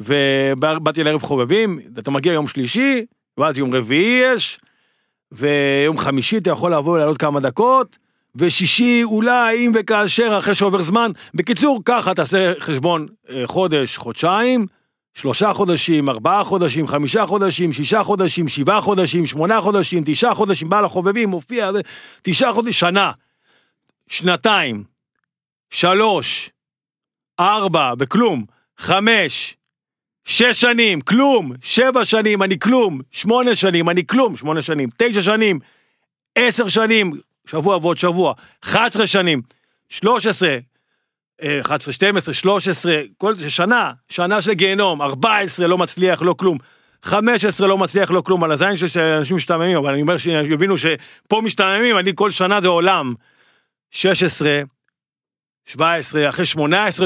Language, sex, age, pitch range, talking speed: Hebrew, male, 50-69, 155-210 Hz, 125 wpm